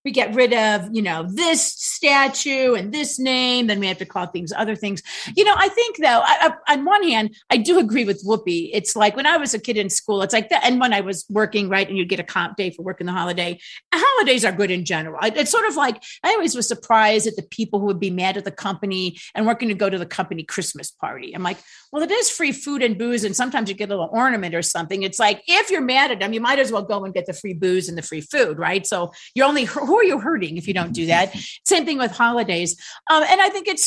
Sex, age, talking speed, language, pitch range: female, 50-69, 270 wpm, English, 195-275 Hz